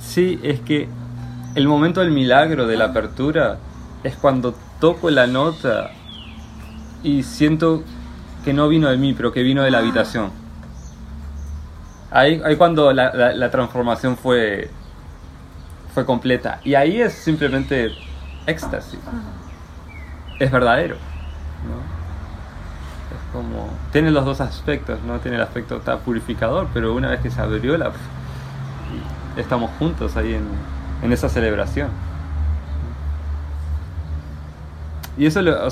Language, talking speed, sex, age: English, 130 wpm, male, 20-39